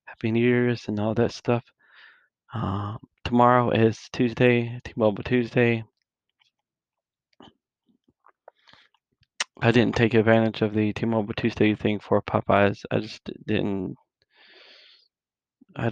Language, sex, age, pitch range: English, male, 20-39, 110-120 Hz